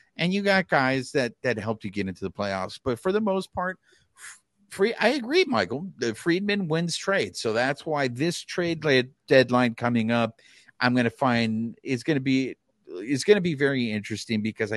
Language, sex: English, male